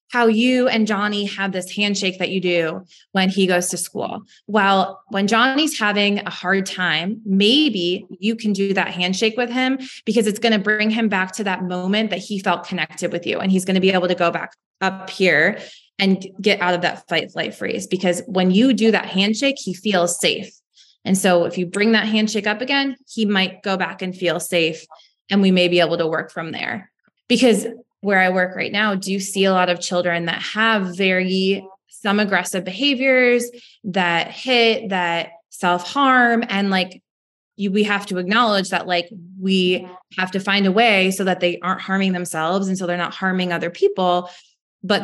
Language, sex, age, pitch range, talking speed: English, female, 20-39, 180-215 Hz, 200 wpm